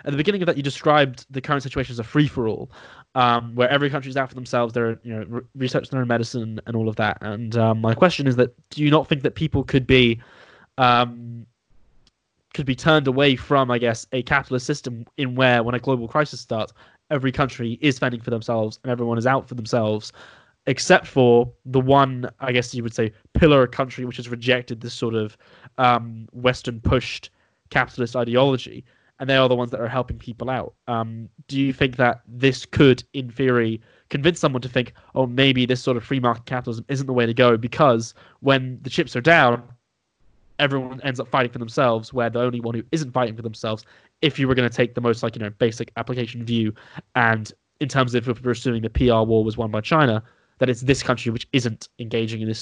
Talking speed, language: 210 wpm, English